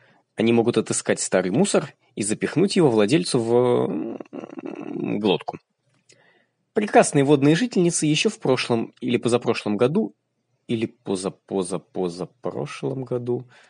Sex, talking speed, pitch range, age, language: male, 100 wpm, 110-160 Hz, 20-39, Russian